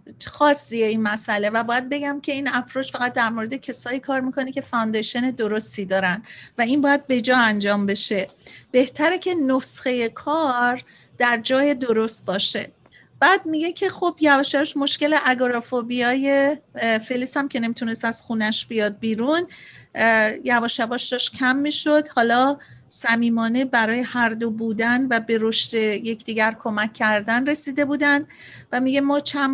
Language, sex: Persian, female